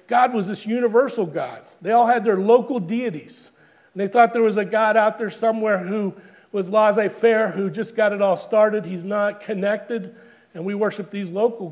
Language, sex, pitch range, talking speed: English, male, 185-230 Hz, 190 wpm